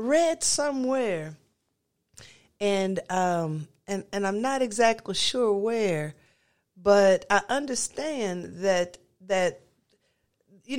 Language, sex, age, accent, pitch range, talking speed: English, female, 50-69, American, 160-215 Hz, 95 wpm